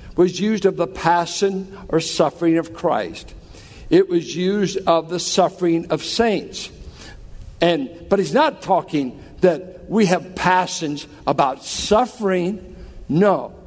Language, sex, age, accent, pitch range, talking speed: English, male, 60-79, American, 170-215 Hz, 125 wpm